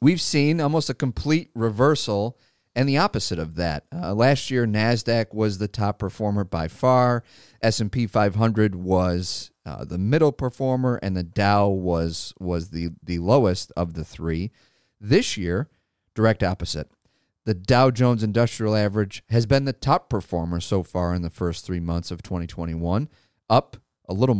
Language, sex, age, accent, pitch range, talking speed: English, male, 40-59, American, 90-120 Hz, 160 wpm